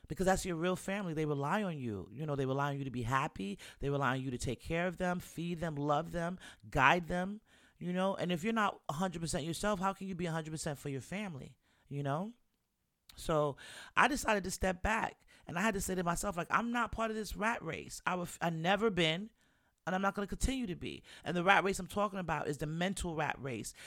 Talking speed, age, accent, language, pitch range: 240 wpm, 30-49, American, English, 150-195 Hz